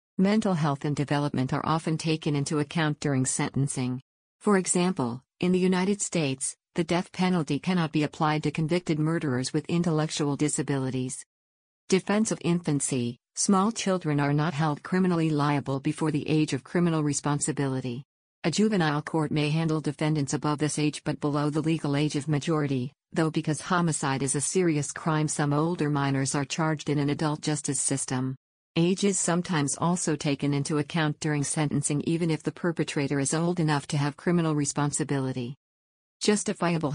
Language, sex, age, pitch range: English, female, 50-69, 140-165 Hz